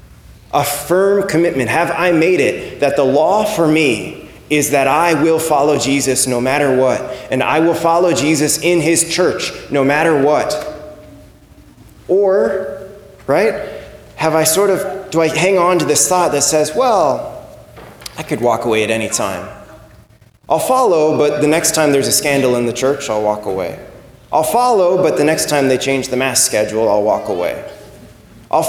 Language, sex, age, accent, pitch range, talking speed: English, male, 20-39, American, 140-190 Hz, 180 wpm